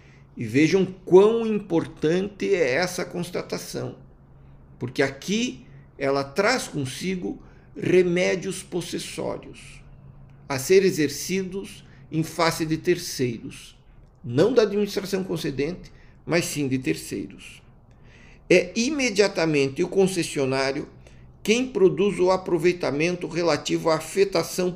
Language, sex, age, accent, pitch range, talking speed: Portuguese, male, 60-79, Brazilian, 140-190 Hz, 95 wpm